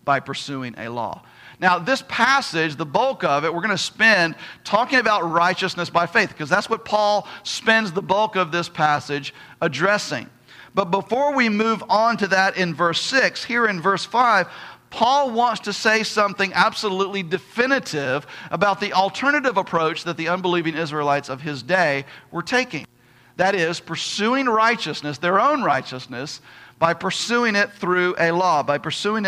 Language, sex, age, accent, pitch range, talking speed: English, male, 40-59, American, 160-215 Hz, 160 wpm